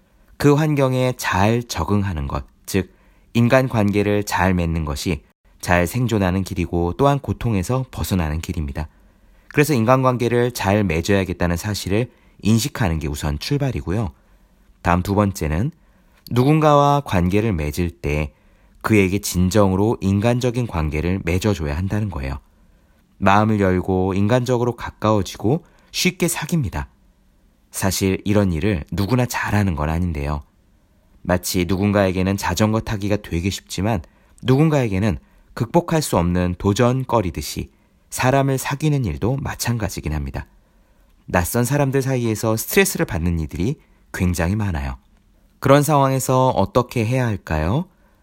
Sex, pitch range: male, 90-125 Hz